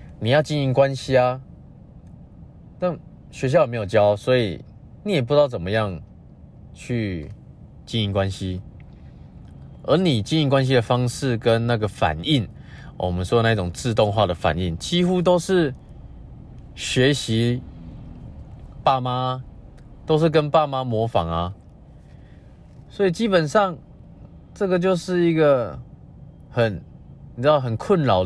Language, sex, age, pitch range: Chinese, male, 20-39, 110-145 Hz